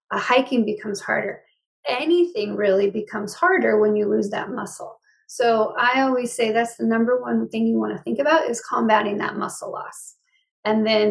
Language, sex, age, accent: English, female, 30-49, American